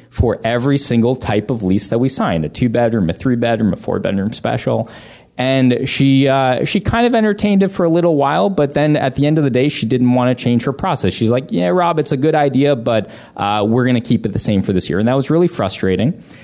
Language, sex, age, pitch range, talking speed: English, male, 20-39, 110-135 Hz, 255 wpm